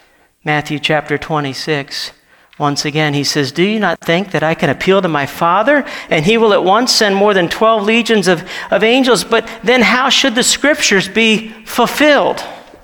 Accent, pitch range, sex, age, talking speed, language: American, 150-205 Hz, male, 50-69, 180 wpm, English